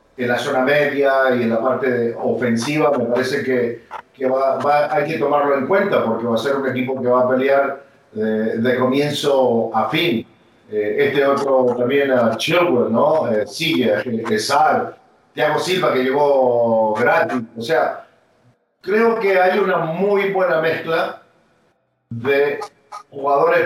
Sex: male